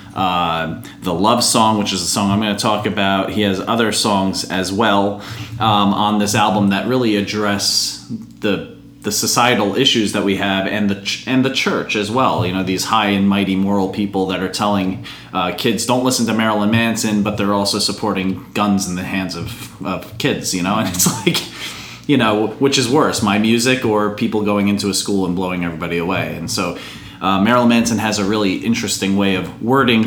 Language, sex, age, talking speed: English, male, 30-49, 210 wpm